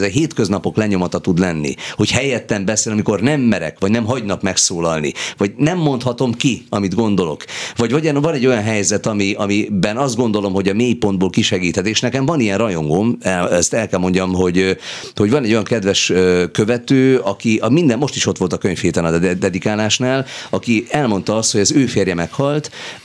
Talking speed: 180 wpm